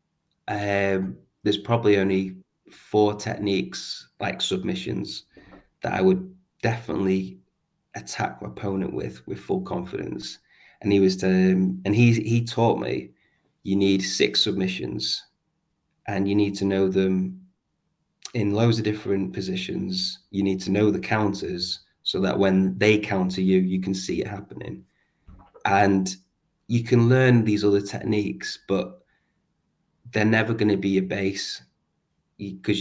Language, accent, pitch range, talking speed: English, British, 95-110 Hz, 140 wpm